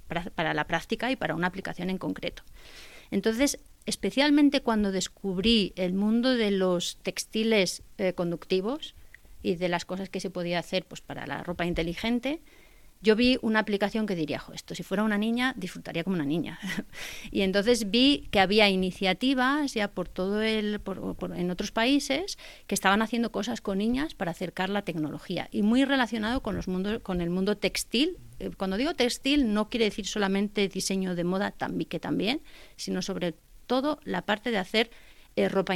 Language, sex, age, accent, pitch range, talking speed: Spanish, female, 30-49, Spanish, 185-230 Hz, 175 wpm